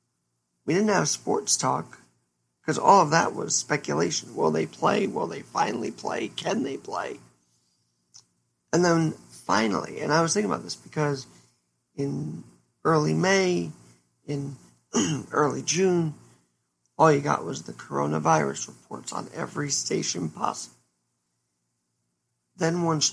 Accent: American